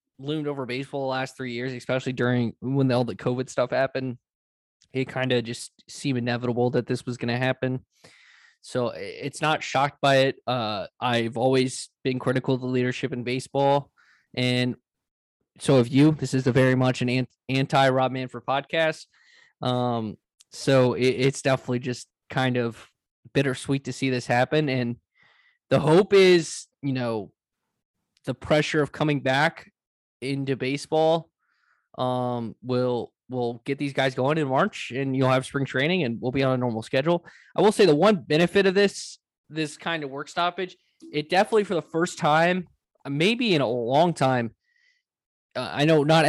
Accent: American